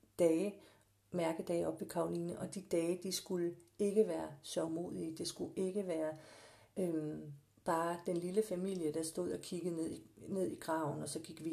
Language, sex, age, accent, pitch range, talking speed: Danish, female, 50-69, native, 150-185 Hz, 175 wpm